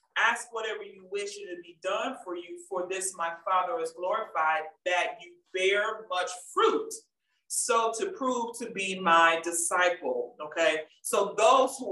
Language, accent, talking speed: English, American, 160 wpm